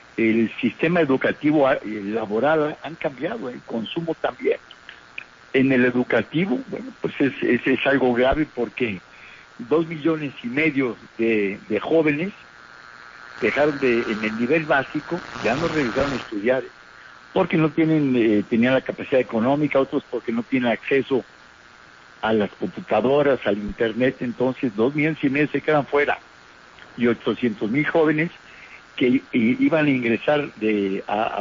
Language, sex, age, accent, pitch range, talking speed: Spanish, male, 60-79, Mexican, 115-150 Hz, 145 wpm